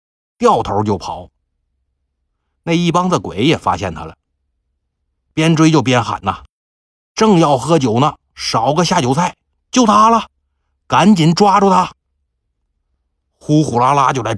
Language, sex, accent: Chinese, male, native